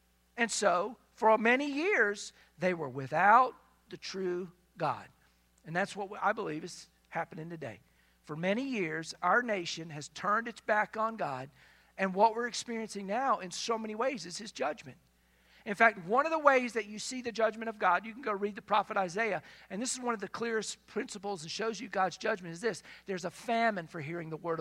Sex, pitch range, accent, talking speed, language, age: male, 165-225 Hz, American, 205 wpm, English, 50-69